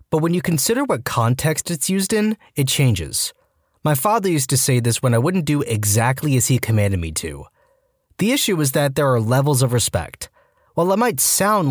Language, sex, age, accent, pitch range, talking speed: English, male, 20-39, American, 110-155 Hz, 205 wpm